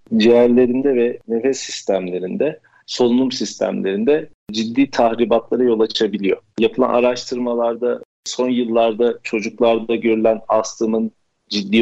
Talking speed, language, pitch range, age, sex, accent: 90 wpm, Turkish, 105-125 Hz, 50-69, male, native